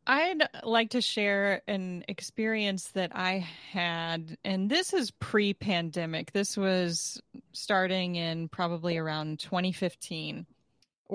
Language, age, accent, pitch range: English, 20-39, American, 175-215 Hz